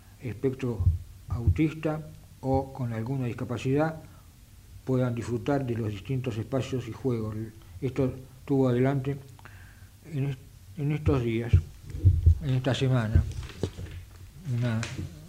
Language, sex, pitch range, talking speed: Italian, male, 100-135 Hz, 100 wpm